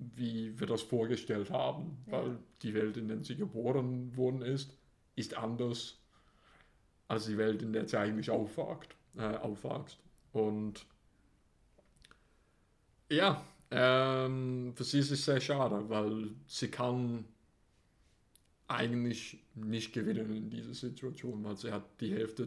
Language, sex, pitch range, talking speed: German, male, 110-125 Hz, 130 wpm